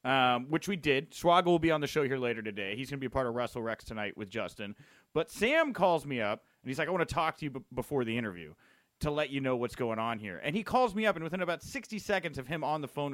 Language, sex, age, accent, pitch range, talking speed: English, male, 30-49, American, 130-205 Hz, 295 wpm